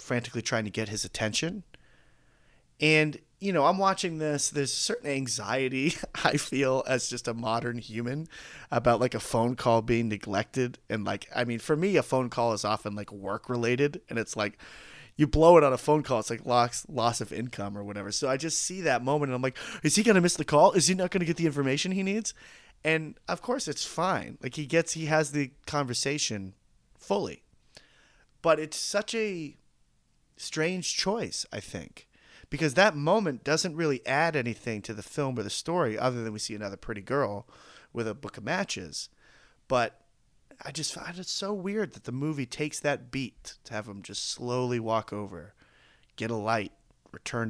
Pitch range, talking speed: 110-155 Hz, 195 wpm